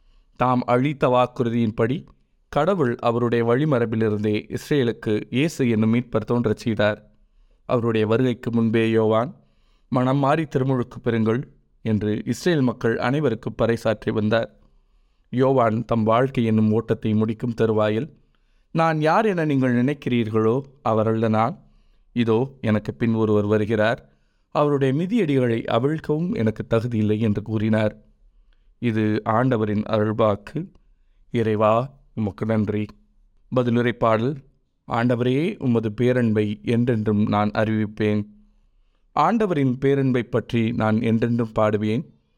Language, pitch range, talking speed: Tamil, 105-125 Hz, 95 wpm